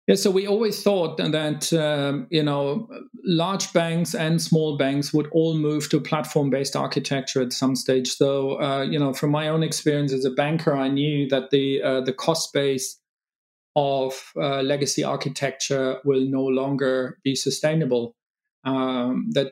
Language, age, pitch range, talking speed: English, 40-59, 130-150 Hz, 165 wpm